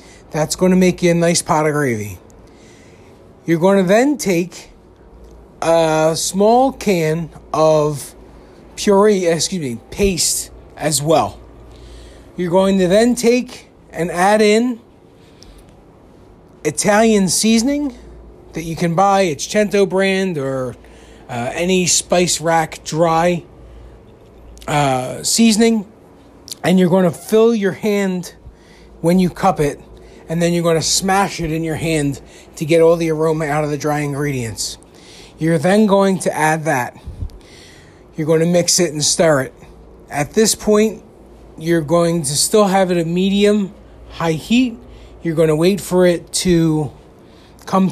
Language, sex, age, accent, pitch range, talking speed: English, male, 40-59, American, 150-190 Hz, 140 wpm